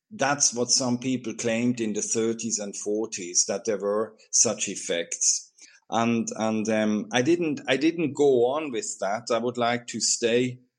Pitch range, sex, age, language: 105-125 Hz, male, 50-69, English